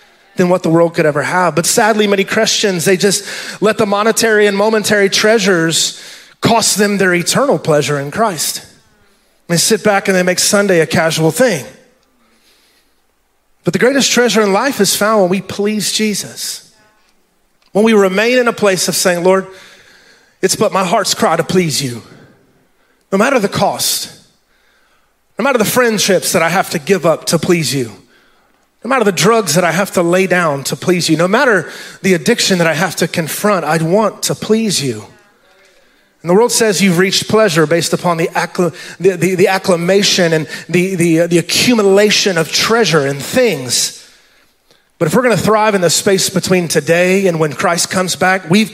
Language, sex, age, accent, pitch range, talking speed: English, male, 30-49, American, 170-210 Hz, 185 wpm